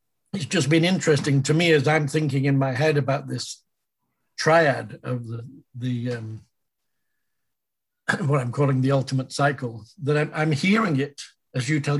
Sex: male